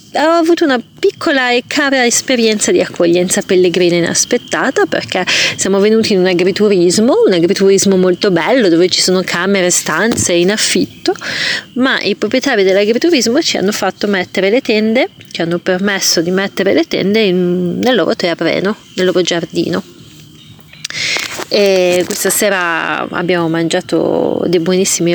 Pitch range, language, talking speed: 175-210 Hz, Italian, 140 wpm